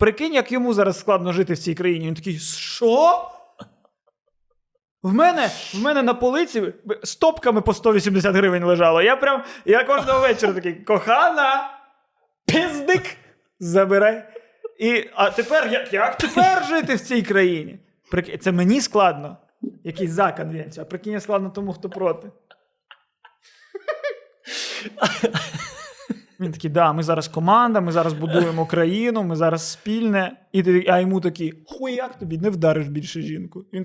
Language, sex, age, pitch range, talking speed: Ukrainian, male, 20-39, 165-230 Hz, 140 wpm